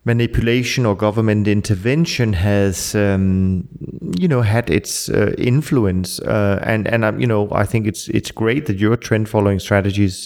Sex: male